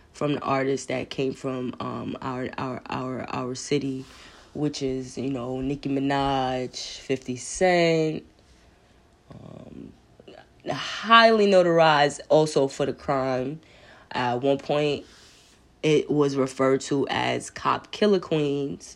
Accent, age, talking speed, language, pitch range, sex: American, 20-39, 125 wpm, English, 130-150 Hz, female